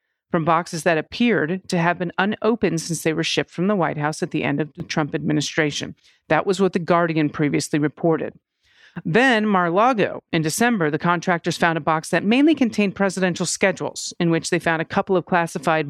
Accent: American